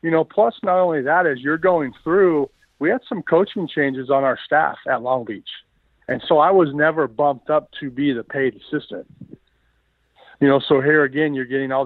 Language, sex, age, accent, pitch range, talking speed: English, male, 50-69, American, 125-145 Hz, 205 wpm